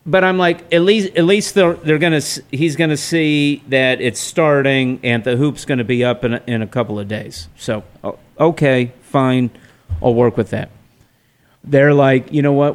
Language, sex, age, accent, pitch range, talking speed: English, male, 50-69, American, 115-140 Hz, 205 wpm